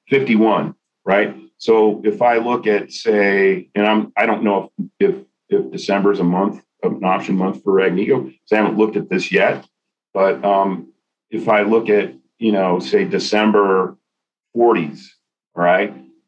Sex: male